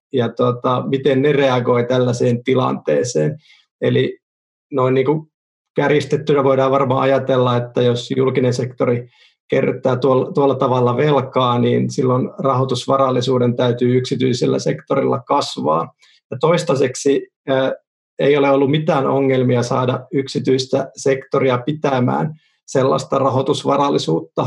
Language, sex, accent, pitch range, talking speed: Finnish, male, native, 130-145 Hz, 105 wpm